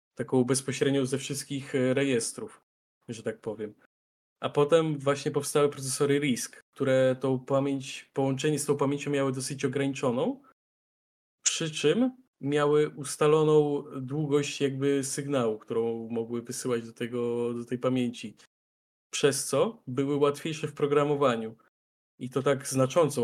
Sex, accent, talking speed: male, native, 120 wpm